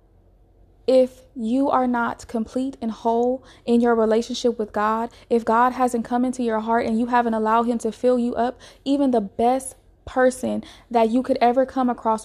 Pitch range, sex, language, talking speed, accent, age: 215-245 Hz, female, English, 185 wpm, American, 20-39